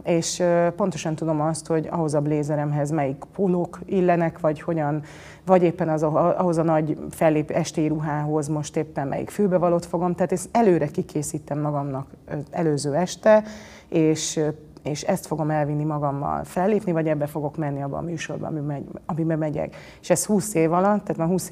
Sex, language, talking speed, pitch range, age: female, Hungarian, 160 wpm, 145-175 Hz, 30-49